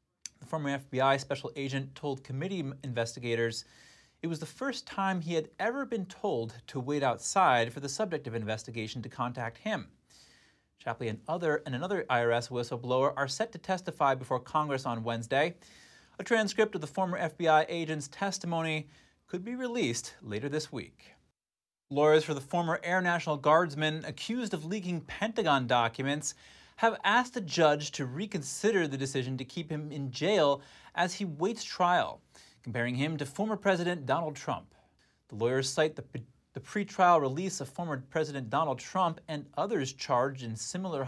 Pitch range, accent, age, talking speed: 130-175 Hz, American, 30-49, 160 wpm